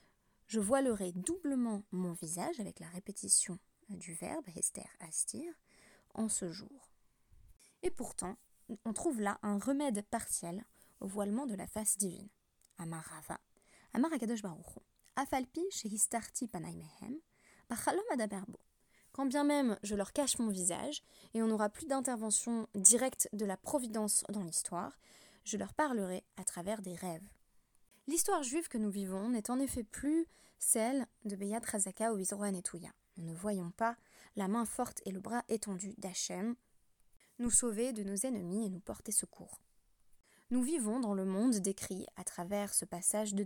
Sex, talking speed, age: female, 140 wpm, 20-39